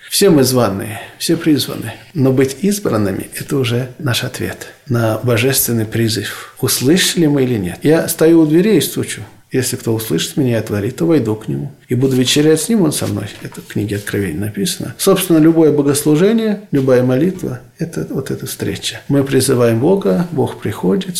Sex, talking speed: male, 180 wpm